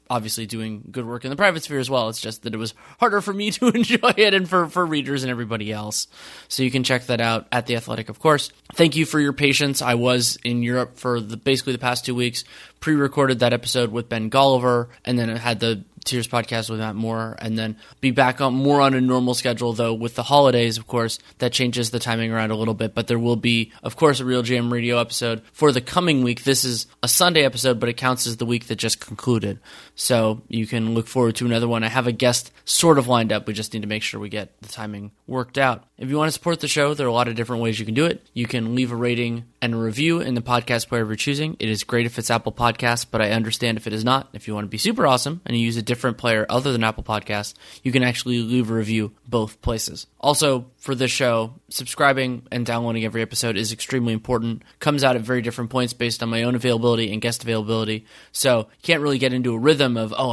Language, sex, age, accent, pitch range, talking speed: English, male, 20-39, American, 115-130 Hz, 260 wpm